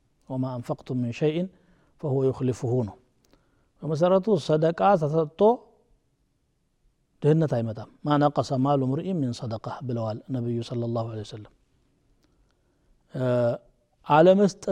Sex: male